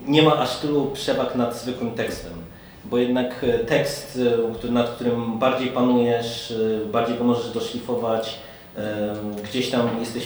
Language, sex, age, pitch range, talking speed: Polish, male, 30-49, 115-130 Hz, 125 wpm